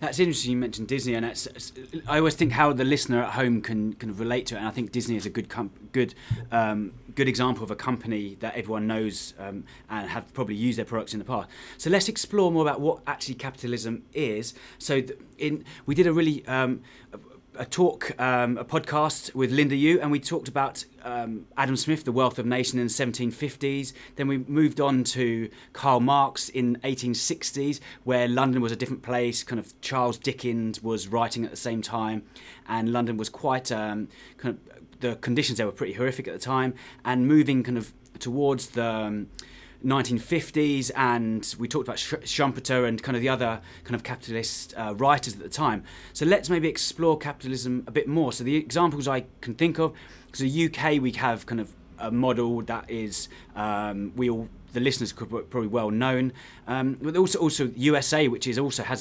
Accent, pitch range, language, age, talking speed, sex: British, 115-140 Hz, English, 20-39, 205 wpm, male